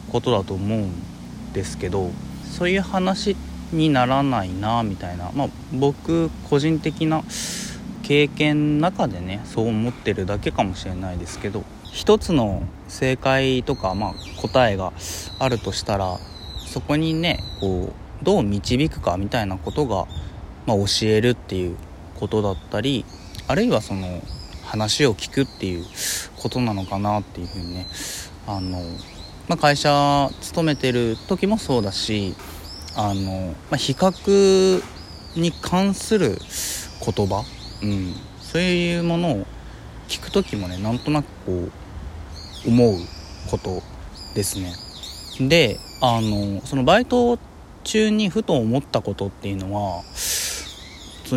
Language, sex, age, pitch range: Japanese, male, 20-39, 90-145 Hz